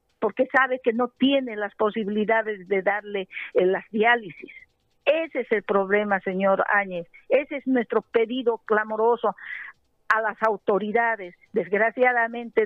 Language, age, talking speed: Spanish, 50-69, 130 wpm